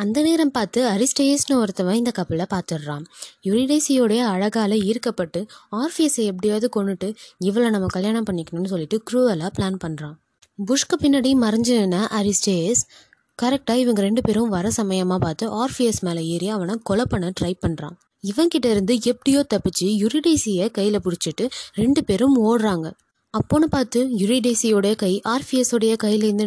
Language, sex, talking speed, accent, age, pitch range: Tamil, female, 125 wpm, native, 20-39, 185-245 Hz